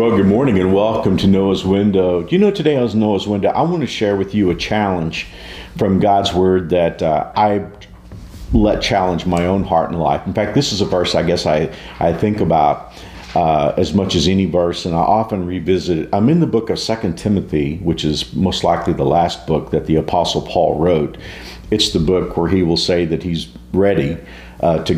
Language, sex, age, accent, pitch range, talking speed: English, male, 50-69, American, 85-110 Hz, 215 wpm